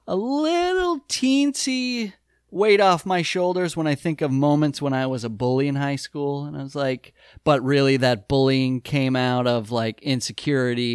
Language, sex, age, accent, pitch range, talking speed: English, male, 30-49, American, 125-175 Hz, 180 wpm